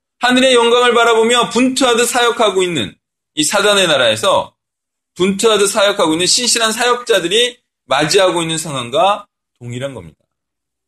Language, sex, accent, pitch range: Korean, male, native, 185-265 Hz